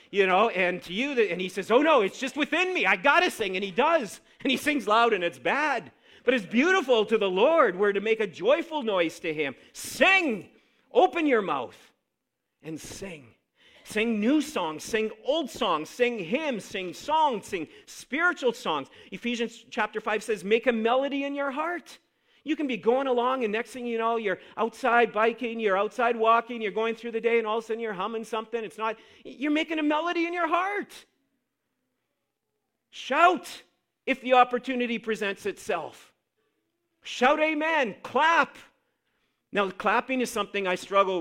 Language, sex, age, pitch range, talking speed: English, male, 40-59, 165-235 Hz, 180 wpm